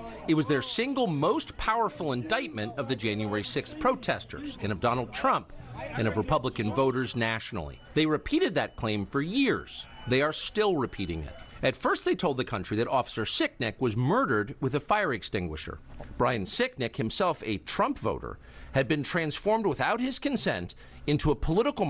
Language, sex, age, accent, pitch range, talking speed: English, male, 50-69, American, 95-150 Hz, 170 wpm